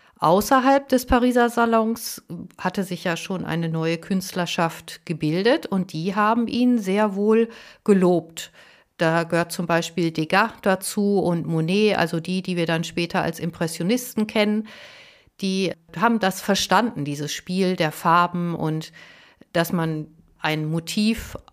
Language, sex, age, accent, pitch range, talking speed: German, female, 50-69, German, 165-210 Hz, 135 wpm